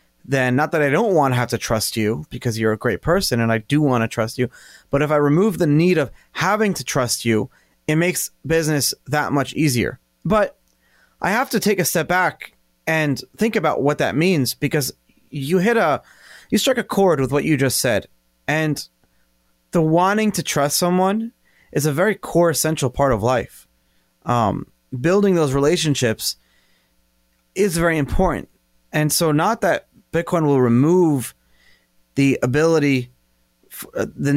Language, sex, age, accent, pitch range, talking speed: English, male, 30-49, American, 125-165 Hz, 170 wpm